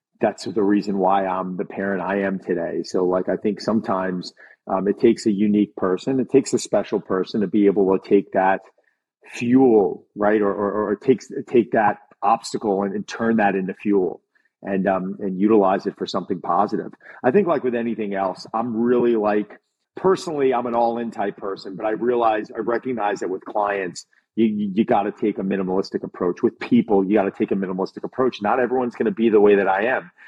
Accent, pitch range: American, 100-115 Hz